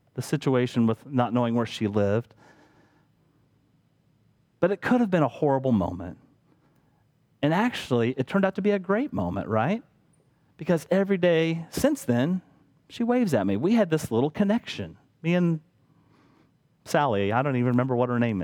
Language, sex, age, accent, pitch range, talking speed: English, male, 40-59, American, 120-160 Hz, 165 wpm